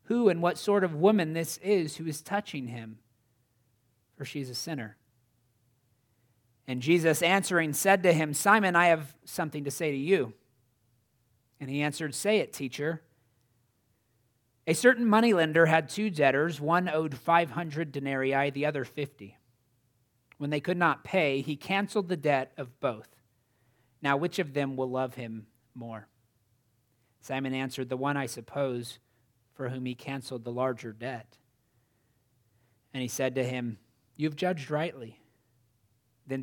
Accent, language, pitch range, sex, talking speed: American, English, 120-160 Hz, male, 150 wpm